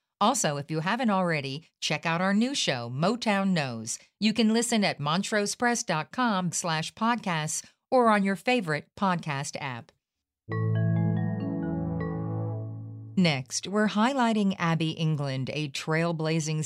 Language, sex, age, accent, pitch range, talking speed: English, female, 50-69, American, 145-190 Hz, 110 wpm